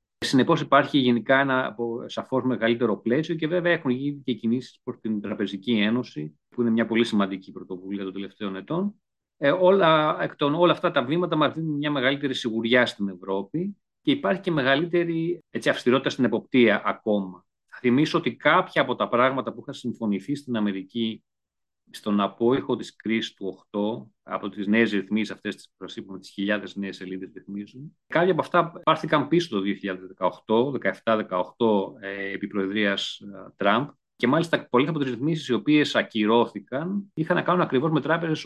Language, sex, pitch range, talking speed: Greek, male, 100-145 Hz, 170 wpm